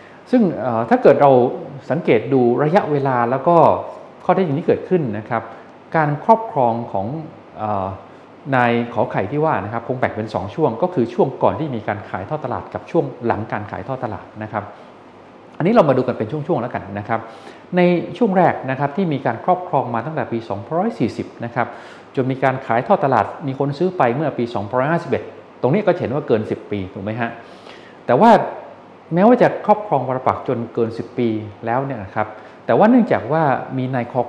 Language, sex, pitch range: Thai, male, 110-150 Hz